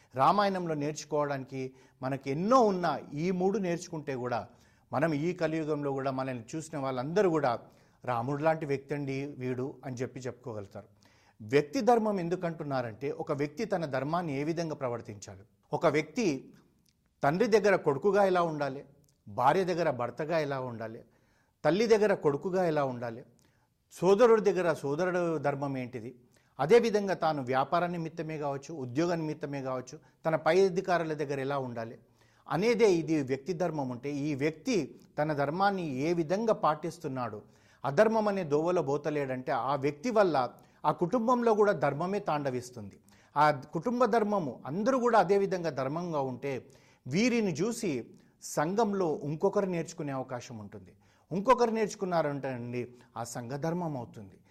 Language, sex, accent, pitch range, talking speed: Telugu, male, native, 130-180 Hz, 130 wpm